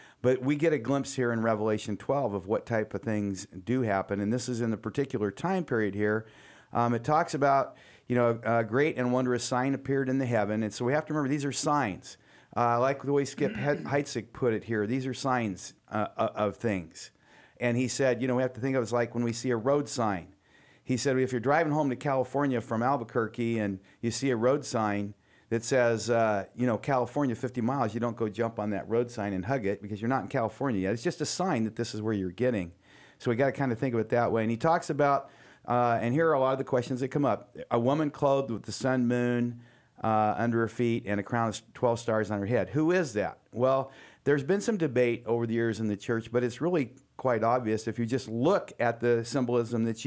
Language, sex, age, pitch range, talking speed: English, male, 40-59, 110-135 Hz, 250 wpm